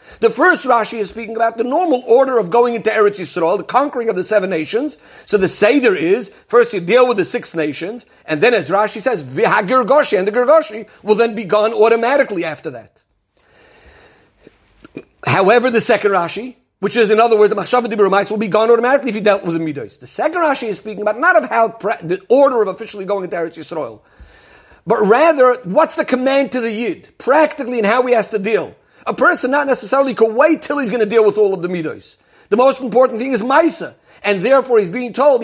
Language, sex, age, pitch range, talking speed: English, male, 50-69, 205-255 Hz, 215 wpm